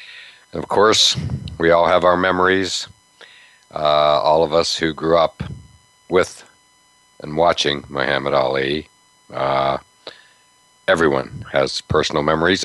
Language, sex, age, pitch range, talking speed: English, male, 60-79, 75-85 Hz, 115 wpm